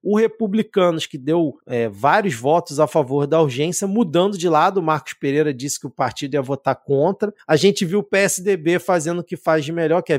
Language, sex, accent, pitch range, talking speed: Portuguese, male, Brazilian, 155-200 Hz, 220 wpm